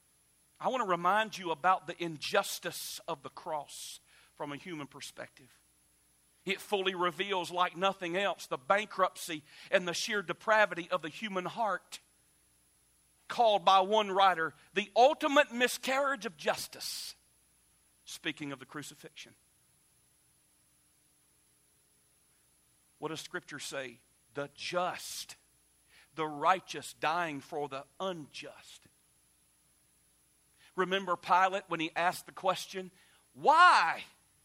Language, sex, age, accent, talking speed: English, male, 50-69, American, 110 wpm